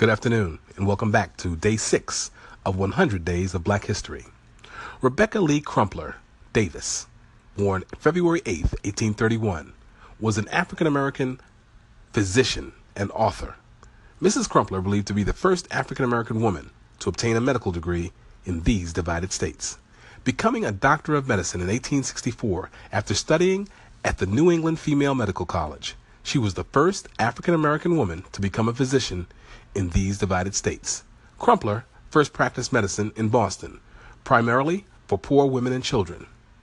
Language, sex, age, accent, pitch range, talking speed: English, male, 40-59, American, 100-130 Hz, 145 wpm